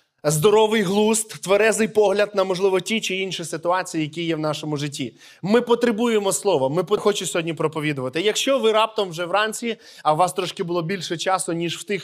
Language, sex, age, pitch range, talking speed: Ukrainian, male, 20-39, 185-225 Hz, 185 wpm